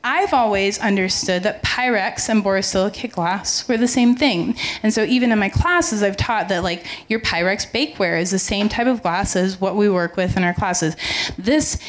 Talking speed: 200 wpm